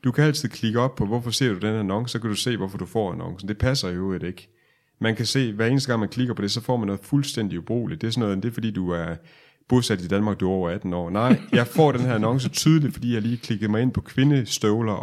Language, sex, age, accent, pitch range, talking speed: Danish, male, 30-49, native, 100-125 Hz, 290 wpm